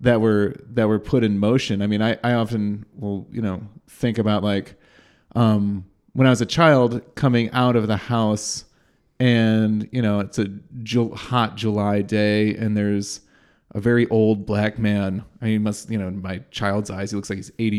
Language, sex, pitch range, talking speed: English, male, 100-120 Hz, 195 wpm